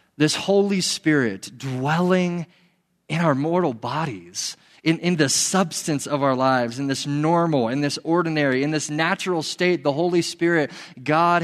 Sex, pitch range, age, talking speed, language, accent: male, 130-160 Hz, 30-49, 150 wpm, English, American